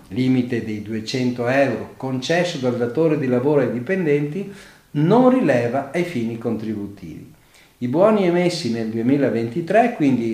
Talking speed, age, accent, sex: 130 wpm, 50-69, native, male